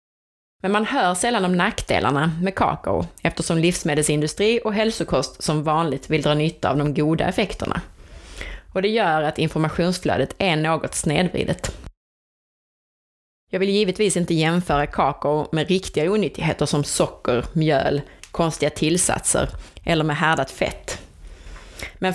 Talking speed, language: 130 wpm, Swedish